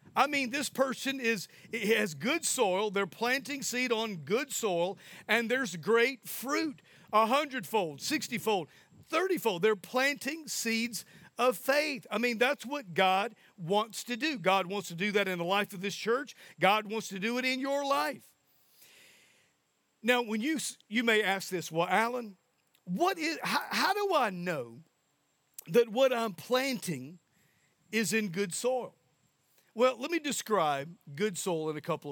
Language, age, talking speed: English, 50-69, 165 wpm